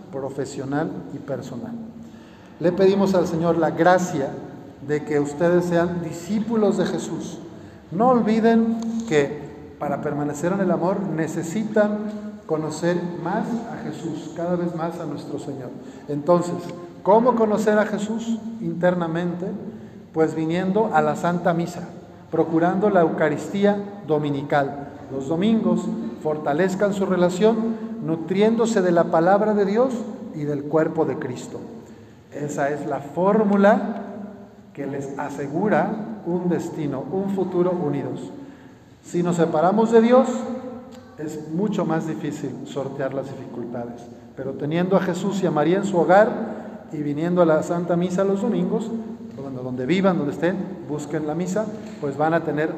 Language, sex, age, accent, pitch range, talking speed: Spanish, male, 50-69, Mexican, 150-200 Hz, 135 wpm